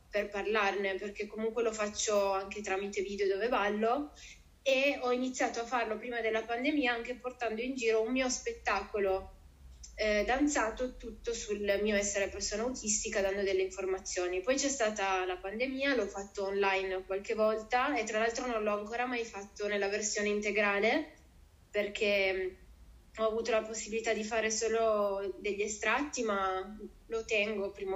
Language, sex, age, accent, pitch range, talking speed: Italian, female, 20-39, native, 205-250 Hz, 155 wpm